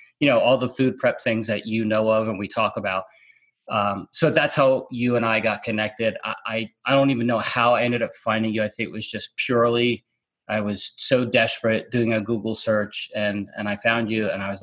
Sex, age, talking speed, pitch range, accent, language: male, 30-49, 240 wpm, 110-125 Hz, American, English